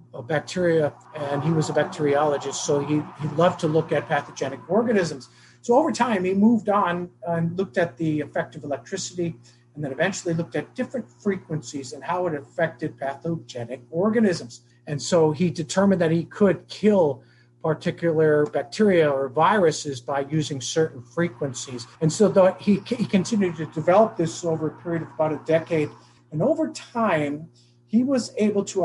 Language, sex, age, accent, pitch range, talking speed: English, male, 50-69, American, 145-180 Hz, 165 wpm